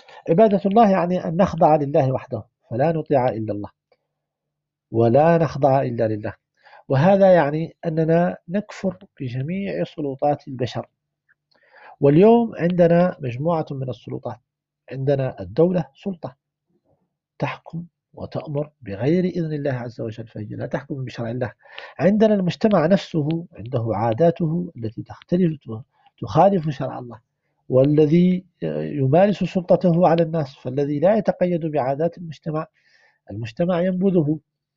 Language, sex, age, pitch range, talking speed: Arabic, male, 50-69, 130-175 Hz, 110 wpm